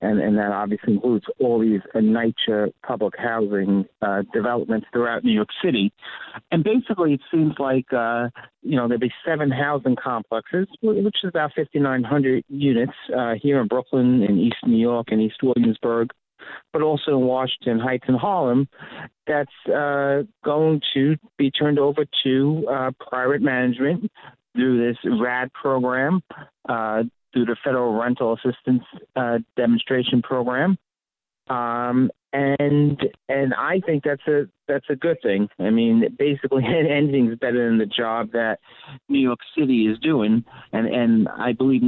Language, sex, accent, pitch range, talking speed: English, male, American, 115-145 Hz, 150 wpm